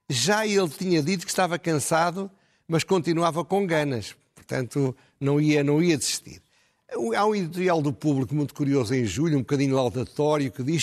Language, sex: Portuguese, male